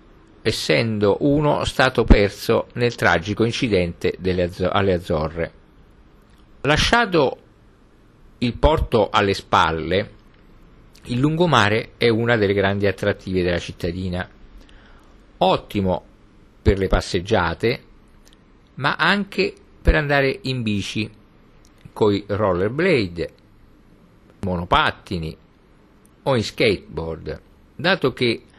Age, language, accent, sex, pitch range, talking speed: 50-69, Italian, native, male, 95-130 Hz, 90 wpm